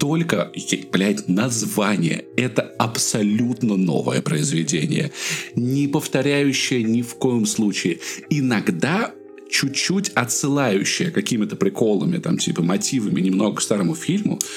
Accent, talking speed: native, 105 wpm